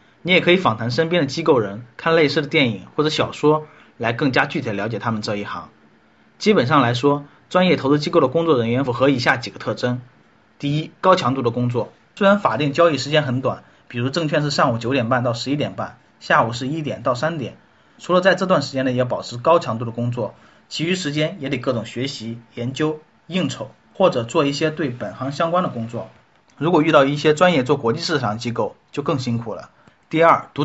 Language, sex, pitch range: Chinese, male, 120-155 Hz